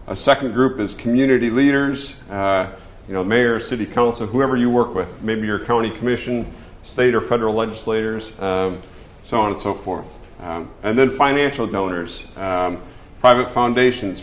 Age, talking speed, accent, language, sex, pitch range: 40-59, 160 wpm, American, English, male, 95-120 Hz